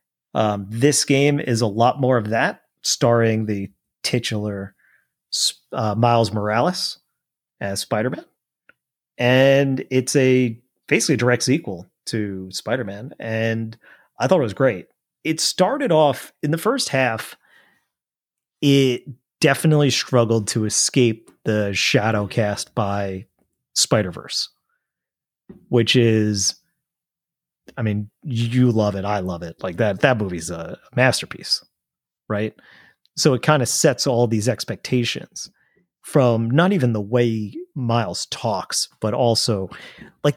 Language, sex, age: English, male, 30-49